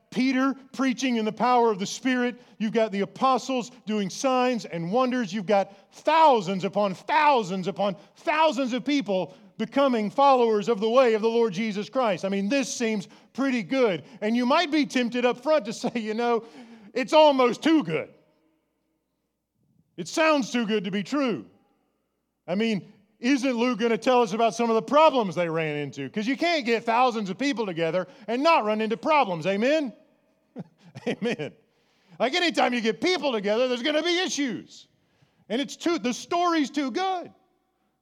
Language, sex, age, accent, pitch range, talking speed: English, male, 40-59, American, 225-280 Hz, 180 wpm